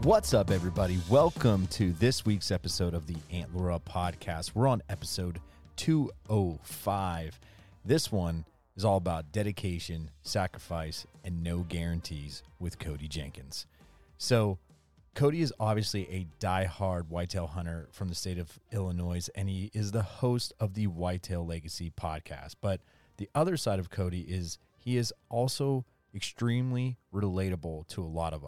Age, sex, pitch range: 30-49, male, 85-105 Hz